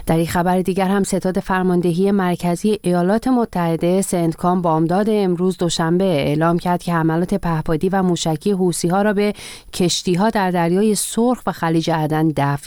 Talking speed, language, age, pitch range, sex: 145 wpm, Persian, 40-59, 160-195 Hz, female